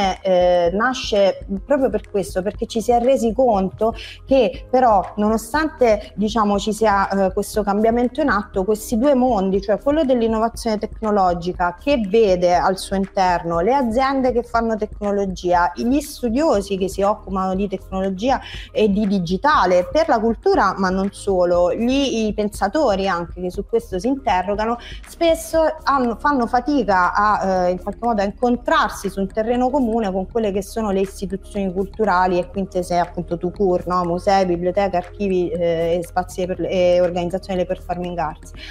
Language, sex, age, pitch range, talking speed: Italian, female, 30-49, 185-240 Hz, 155 wpm